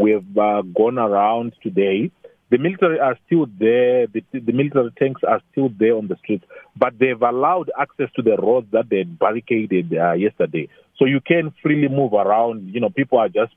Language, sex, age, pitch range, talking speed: English, male, 40-59, 110-145 Hz, 200 wpm